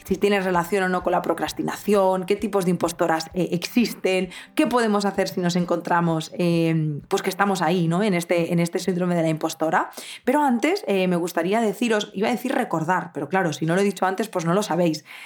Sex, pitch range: female, 170-200 Hz